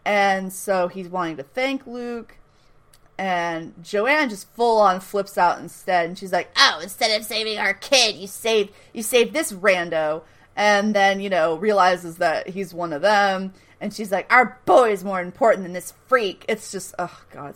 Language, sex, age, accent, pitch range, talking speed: English, female, 30-49, American, 185-245 Hz, 185 wpm